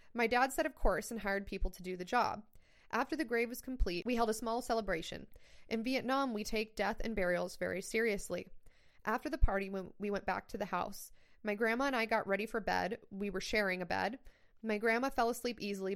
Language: English